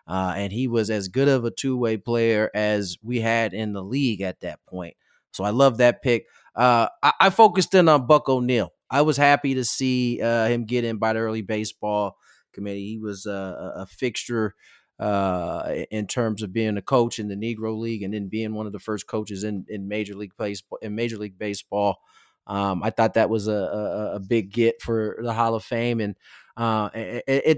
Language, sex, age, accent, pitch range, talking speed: English, male, 30-49, American, 105-130 Hz, 215 wpm